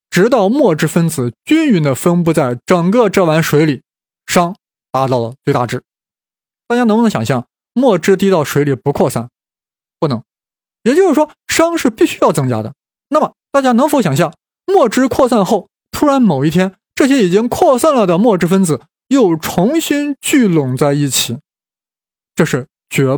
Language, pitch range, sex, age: Chinese, 145-235 Hz, male, 20-39